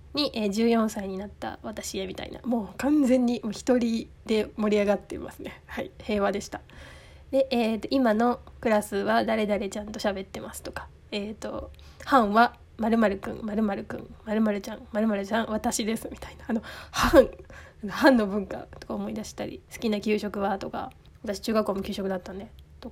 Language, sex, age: Japanese, female, 20-39